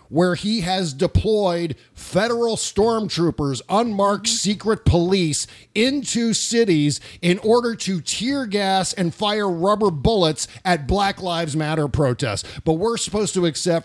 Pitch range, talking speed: 130-180 Hz, 130 wpm